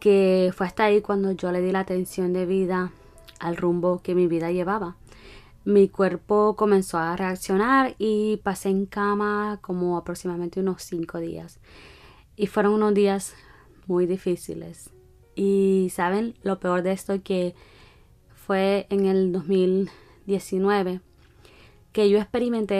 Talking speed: 135 wpm